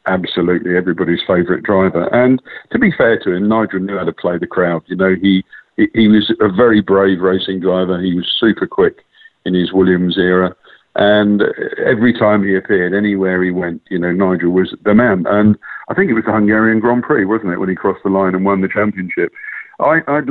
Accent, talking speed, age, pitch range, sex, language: British, 205 wpm, 50-69, 95-110 Hz, male, English